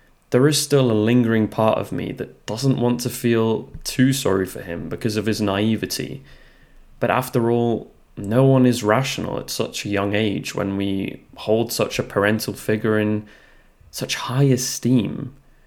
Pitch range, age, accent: 110-140 Hz, 20-39, British